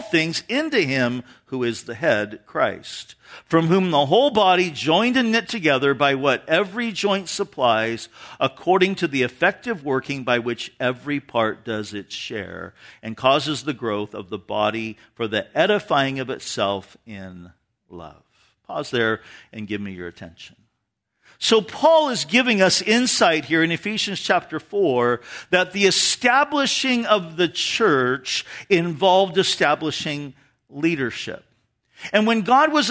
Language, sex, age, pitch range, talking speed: English, male, 50-69, 140-215 Hz, 145 wpm